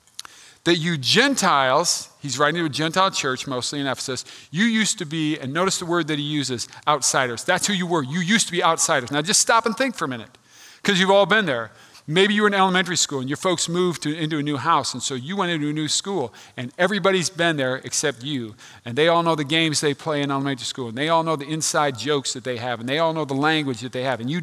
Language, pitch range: English, 140-195 Hz